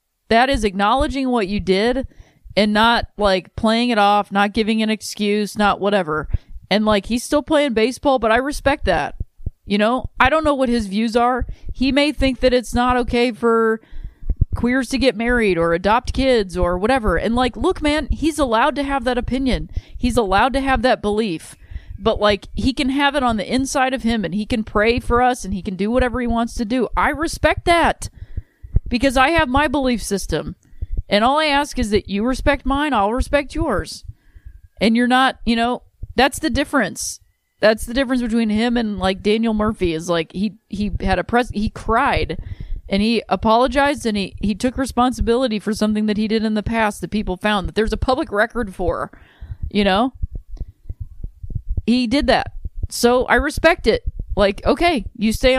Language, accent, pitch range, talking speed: English, American, 205-260 Hz, 195 wpm